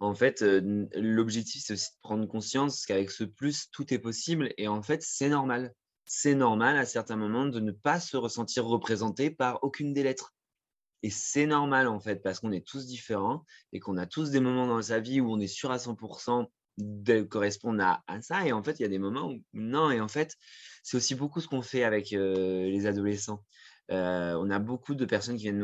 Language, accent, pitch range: French, French, 100-125 Hz